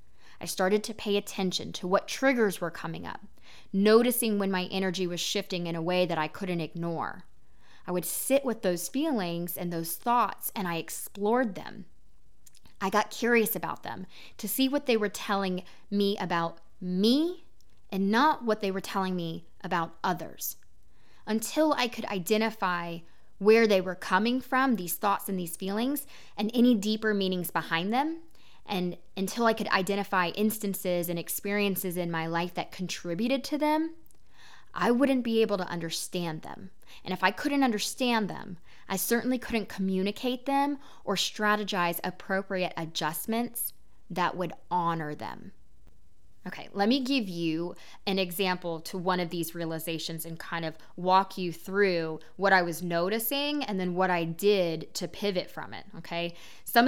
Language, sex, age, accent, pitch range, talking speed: English, female, 20-39, American, 170-220 Hz, 160 wpm